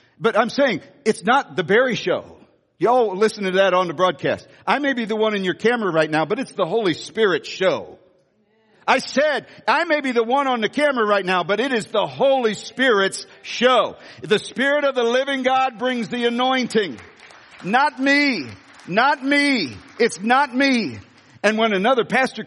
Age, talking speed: 60-79, 185 wpm